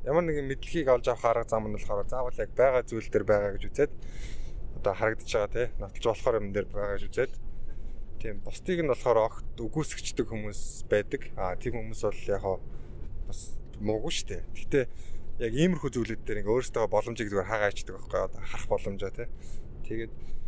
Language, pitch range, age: Korean, 95-115 Hz, 20-39